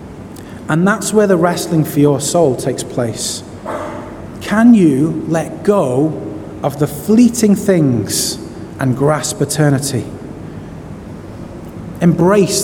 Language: English